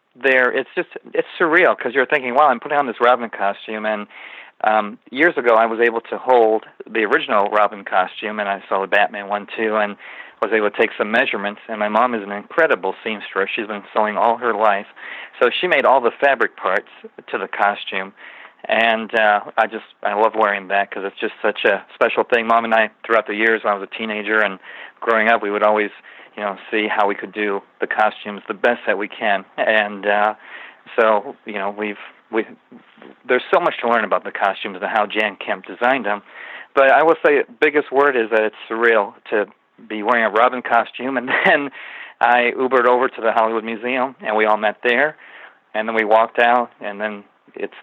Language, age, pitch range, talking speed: English, 40-59, 105-115 Hz, 215 wpm